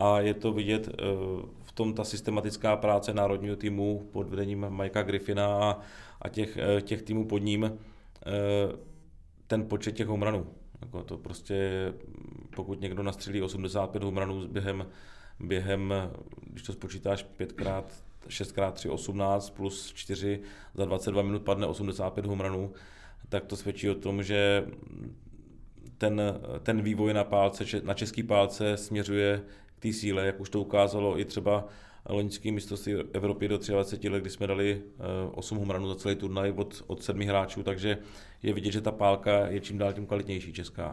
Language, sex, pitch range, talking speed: Czech, male, 95-105 Hz, 150 wpm